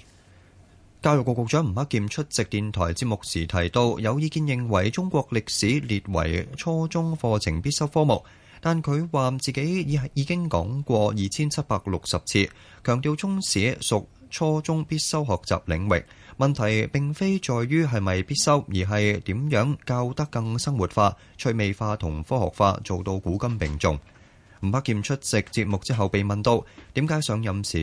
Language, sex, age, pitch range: Chinese, male, 20-39, 95-135 Hz